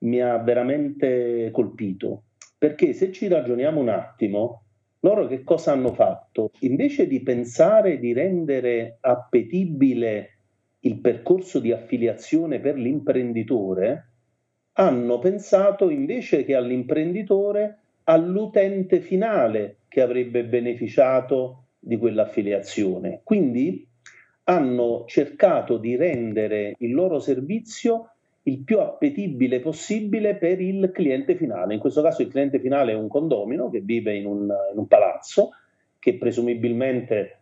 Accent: native